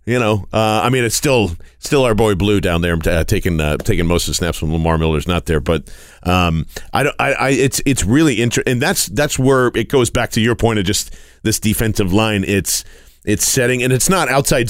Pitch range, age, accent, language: 90-125 Hz, 40-59, American, English